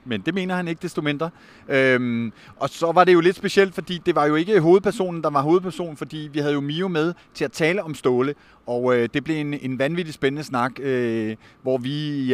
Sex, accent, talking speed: male, native, 235 wpm